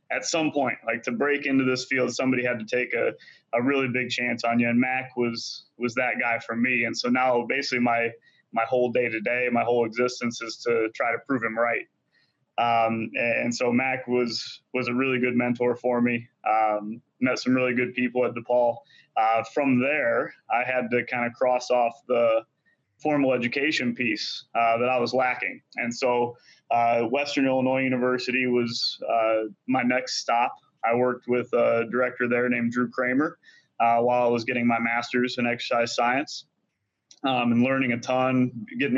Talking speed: 190 wpm